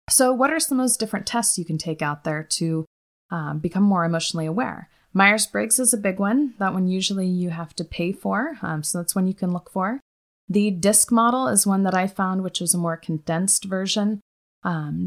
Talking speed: 220 wpm